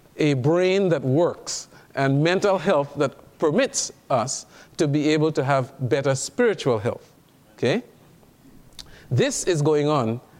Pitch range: 130-160 Hz